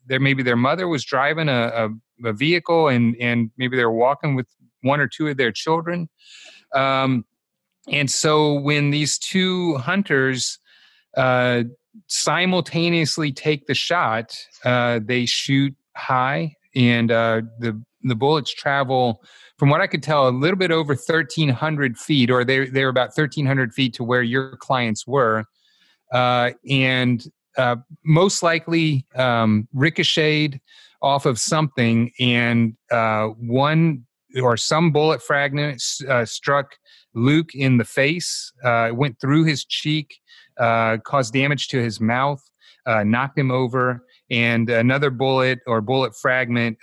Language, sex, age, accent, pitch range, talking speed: English, male, 30-49, American, 120-150 Hz, 140 wpm